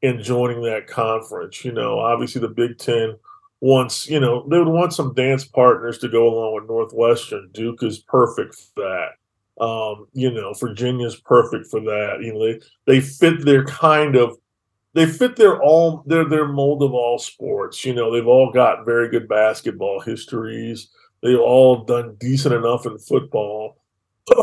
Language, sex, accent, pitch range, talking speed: English, male, American, 120-140 Hz, 175 wpm